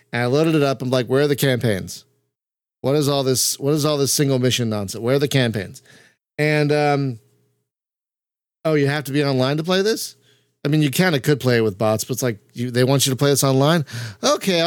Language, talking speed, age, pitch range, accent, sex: English, 220 wpm, 40-59, 110-150 Hz, American, male